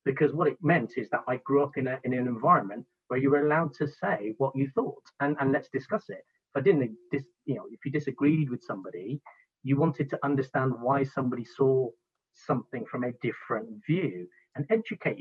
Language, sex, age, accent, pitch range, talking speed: English, male, 40-59, British, 120-145 Hz, 210 wpm